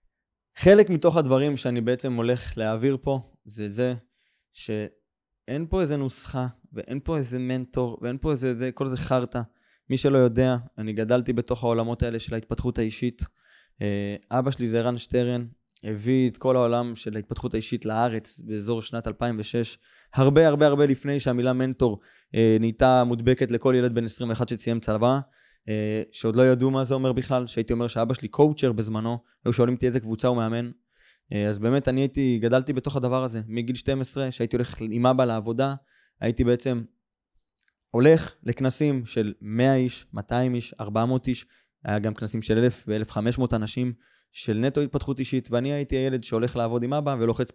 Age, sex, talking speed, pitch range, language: 20-39, male, 165 wpm, 115-130 Hz, Hebrew